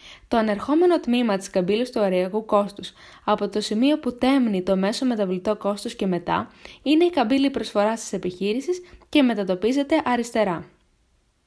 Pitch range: 190-270 Hz